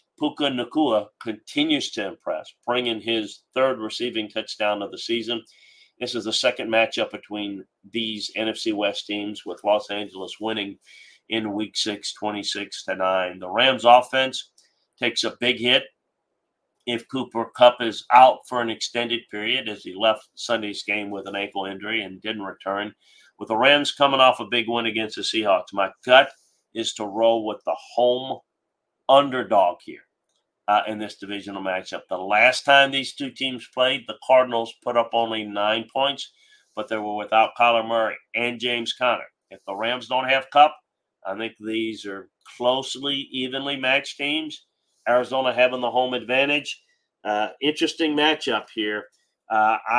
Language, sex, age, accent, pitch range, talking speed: English, male, 40-59, American, 105-130 Hz, 160 wpm